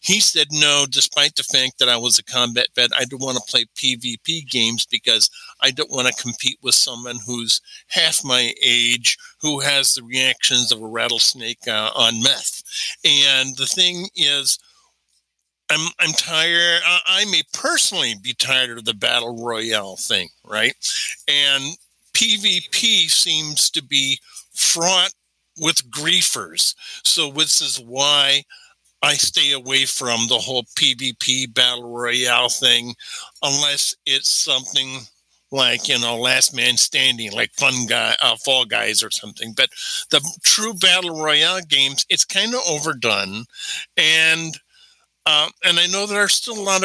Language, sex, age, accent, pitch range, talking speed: English, male, 50-69, American, 120-165 Hz, 150 wpm